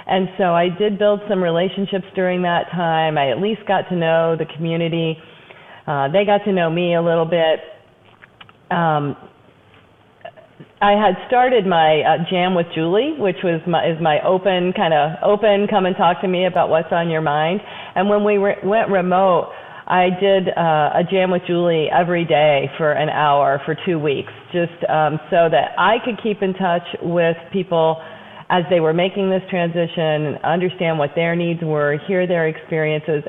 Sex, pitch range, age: female, 160-200 Hz, 40-59